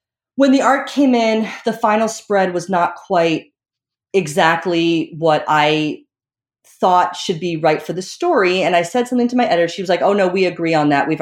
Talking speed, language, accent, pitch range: 205 wpm, English, American, 160-240 Hz